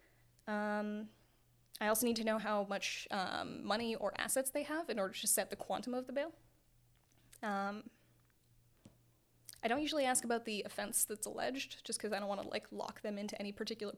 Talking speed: 195 wpm